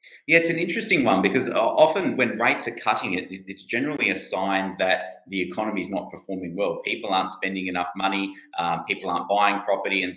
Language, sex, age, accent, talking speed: English, male, 30-49, Australian, 200 wpm